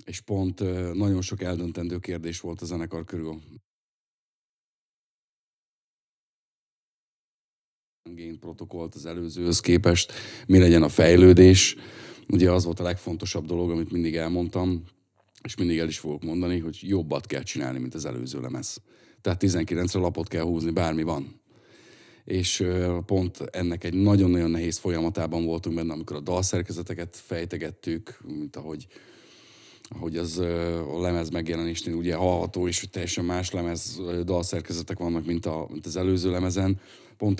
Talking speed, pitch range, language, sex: 135 wpm, 85-95 Hz, Hungarian, male